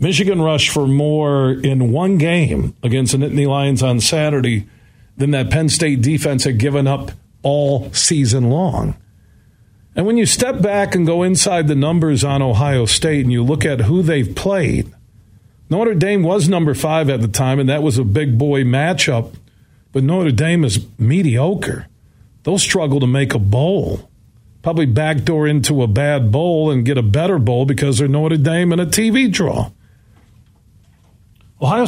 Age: 50-69